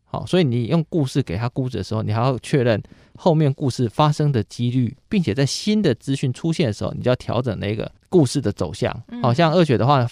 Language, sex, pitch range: Chinese, male, 110-140 Hz